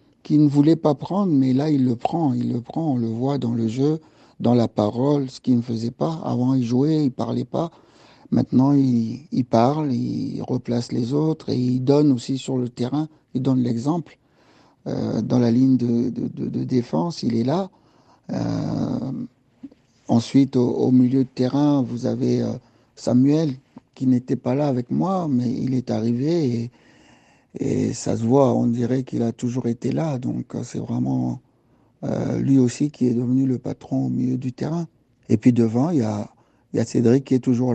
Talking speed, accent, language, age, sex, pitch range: 195 wpm, French, French, 60-79, male, 120-135 Hz